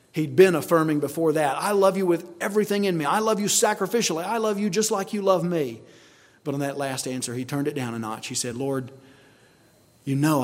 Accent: American